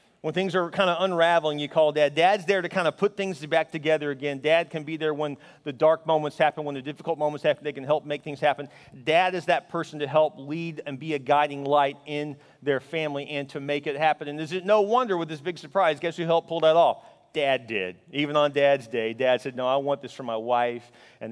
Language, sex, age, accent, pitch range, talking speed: English, male, 40-59, American, 145-195 Hz, 255 wpm